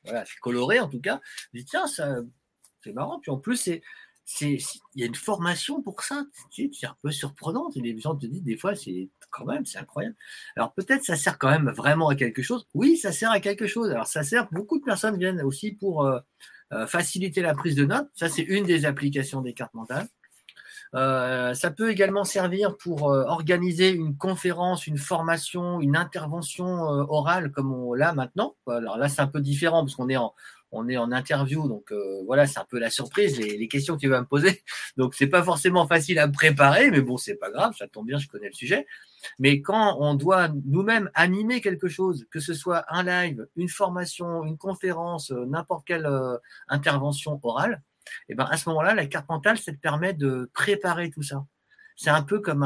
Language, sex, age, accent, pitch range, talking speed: French, male, 50-69, French, 135-185 Hz, 220 wpm